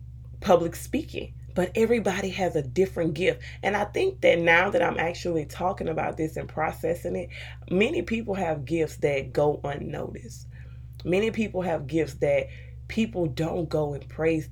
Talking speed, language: 160 wpm, English